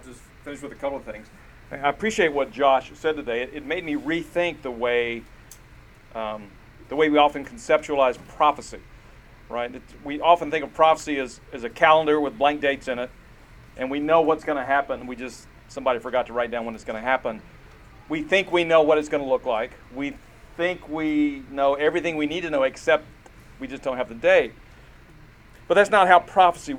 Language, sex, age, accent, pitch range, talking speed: English, male, 40-59, American, 130-170 Hz, 210 wpm